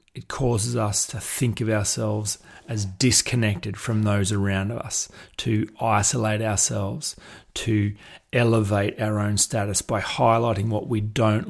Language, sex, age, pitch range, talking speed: English, male, 30-49, 105-120 Hz, 135 wpm